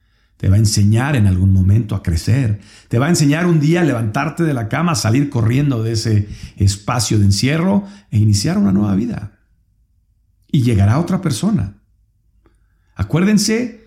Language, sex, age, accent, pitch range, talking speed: Spanish, male, 50-69, Mexican, 95-145 Hz, 165 wpm